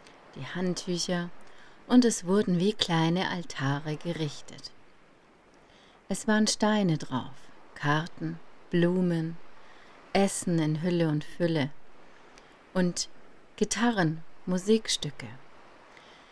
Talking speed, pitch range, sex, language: 80 wpm, 150-190 Hz, female, German